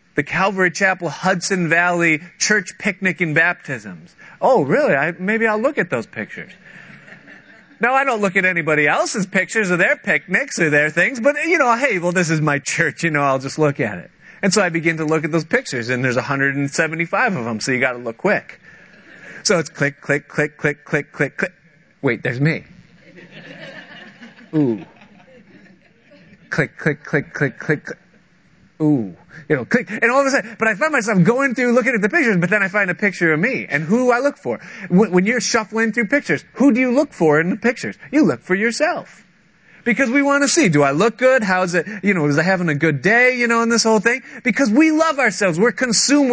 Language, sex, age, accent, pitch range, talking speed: English, male, 30-49, American, 160-235 Hz, 220 wpm